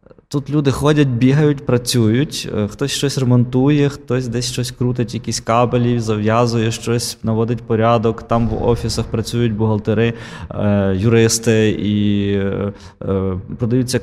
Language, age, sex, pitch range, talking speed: Ukrainian, 20-39, male, 105-125 Hz, 110 wpm